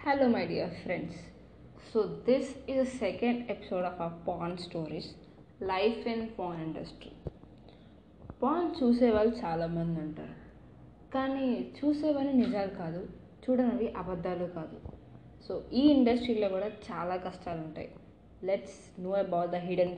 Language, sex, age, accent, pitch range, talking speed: Telugu, female, 20-39, native, 175-235 Hz, 125 wpm